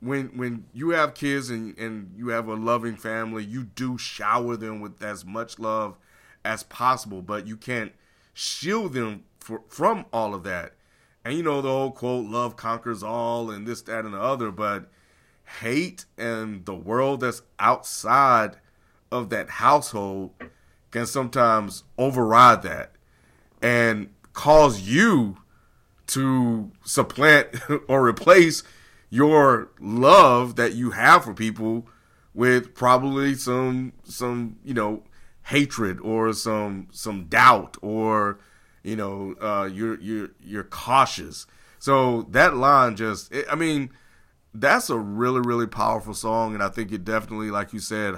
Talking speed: 145 wpm